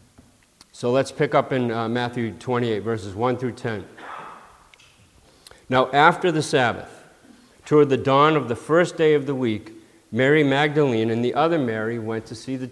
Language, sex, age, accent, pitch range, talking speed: English, male, 50-69, American, 115-160 Hz, 165 wpm